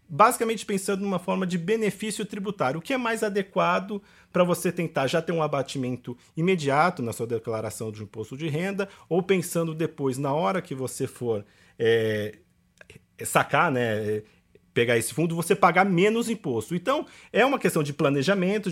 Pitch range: 140-205 Hz